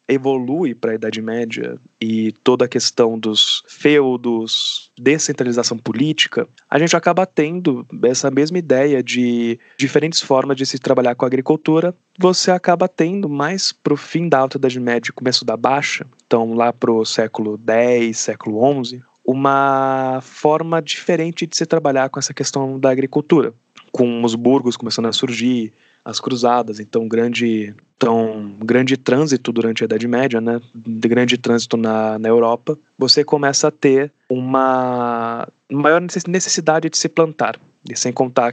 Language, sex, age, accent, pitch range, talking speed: Portuguese, male, 20-39, Brazilian, 115-140 Hz, 155 wpm